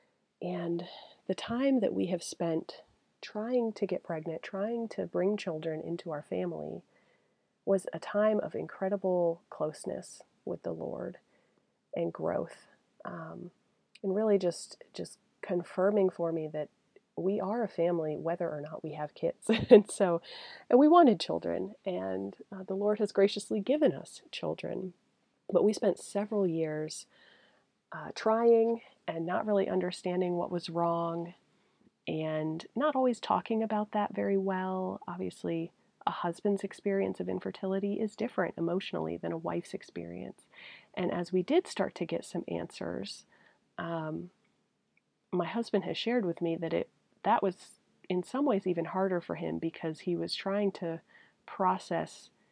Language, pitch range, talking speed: English, 165-210 Hz, 150 wpm